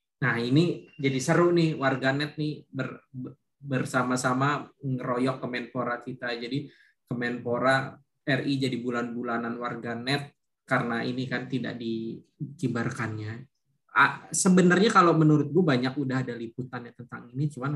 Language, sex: Indonesian, male